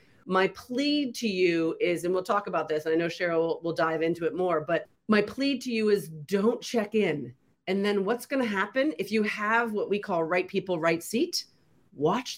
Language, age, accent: English, 40-59, American